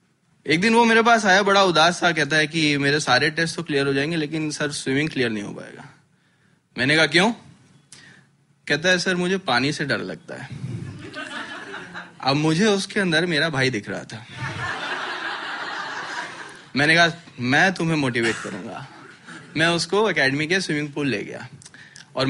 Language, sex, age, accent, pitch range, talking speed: Hindi, male, 20-39, native, 140-195 Hz, 165 wpm